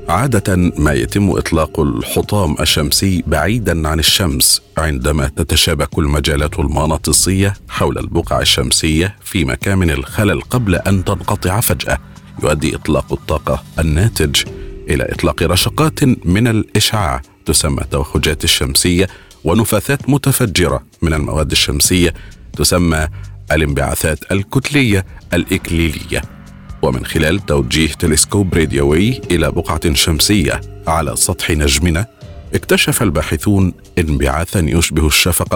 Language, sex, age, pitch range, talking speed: Arabic, male, 50-69, 80-100 Hz, 100 wpm